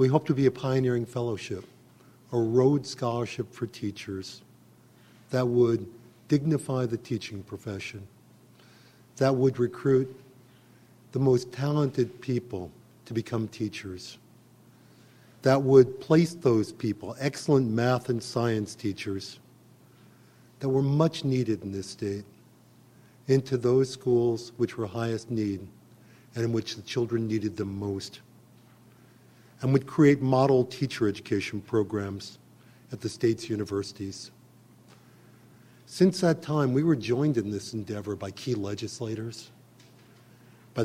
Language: English